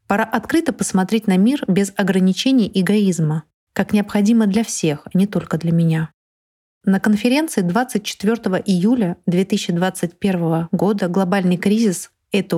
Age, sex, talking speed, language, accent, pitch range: 30-49, female, 125 wpm, Russian, native, 175-210 Hz